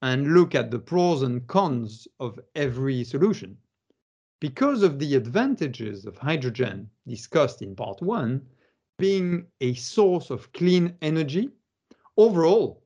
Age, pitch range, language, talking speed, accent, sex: 50-69, 125-175 Hz, English, 125 wpm, French, male